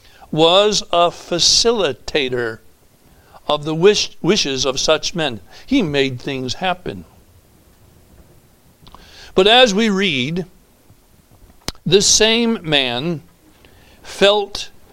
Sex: male